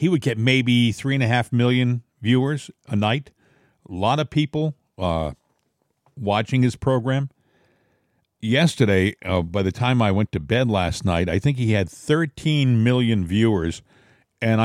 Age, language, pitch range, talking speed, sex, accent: 50-69, English, 105-145 Hz, 150 wpm, male, American